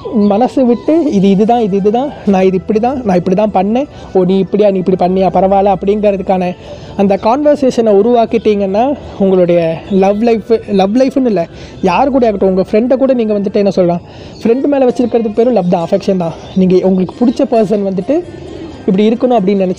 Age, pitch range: 20-39, 190-235 Hz